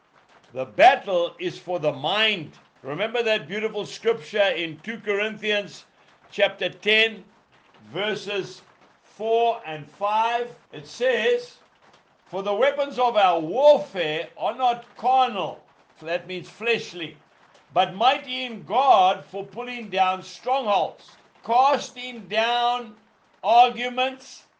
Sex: male